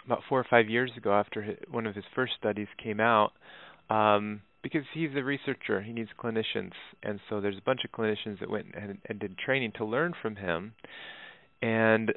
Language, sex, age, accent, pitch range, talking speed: English, male, 30-49, American, 105-120 Hz, 200 wpm